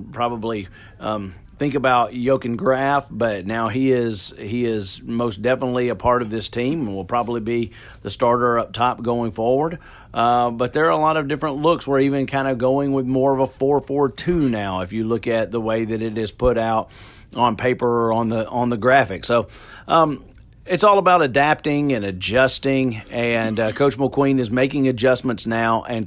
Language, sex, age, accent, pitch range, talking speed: English, male, 40-59, American, 110-130 Hz, 195 wpm